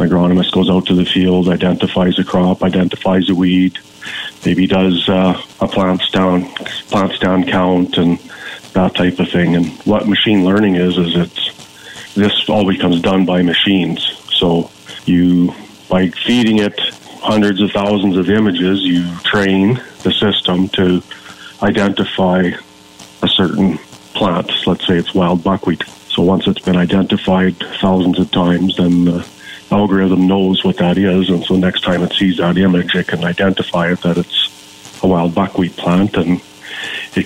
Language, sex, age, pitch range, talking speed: English, male, 40-59, 90-95 Hz, 160 wpm